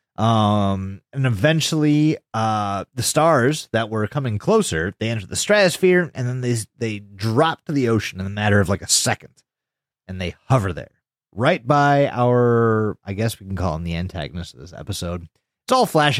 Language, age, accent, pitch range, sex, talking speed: English, 30-49, American, 100-145 Hz, male, 185 wpm